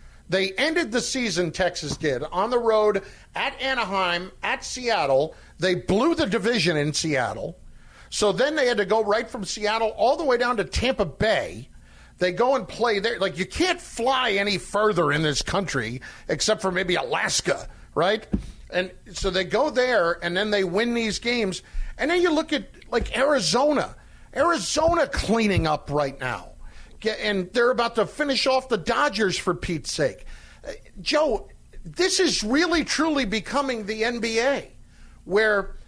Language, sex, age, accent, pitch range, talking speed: English, male, 50-69, American, 195-265 Hz, 160 wpm